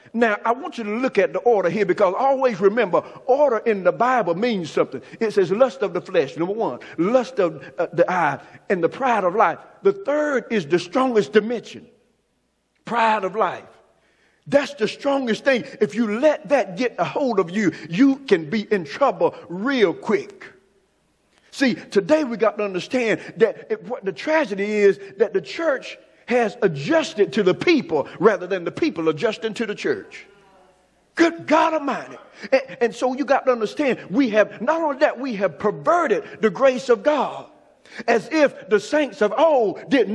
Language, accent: English, American